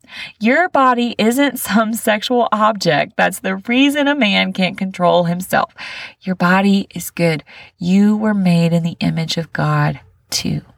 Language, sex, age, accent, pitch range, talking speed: English, female, 30-49, American, 165-235 Hz, 150 wpm